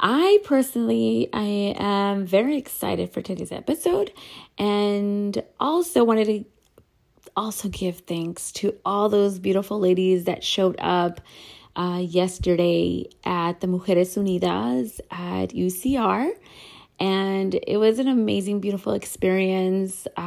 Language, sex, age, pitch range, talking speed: English, female, 30-49, 175-205 Hz, 115 wpm